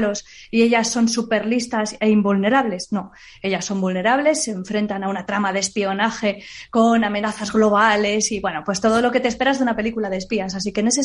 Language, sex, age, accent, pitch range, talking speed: Spanish, female, 20-39, Spanish, 210-260 Hz, 200 wpm